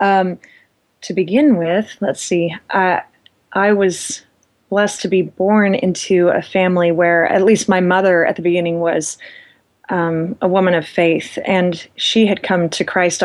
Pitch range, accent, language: 170-200 Hz, American, English